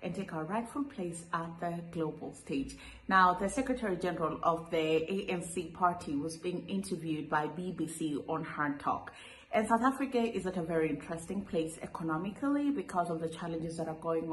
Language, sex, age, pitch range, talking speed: English, female, 30-49, 160-195 Hz, 175 wpm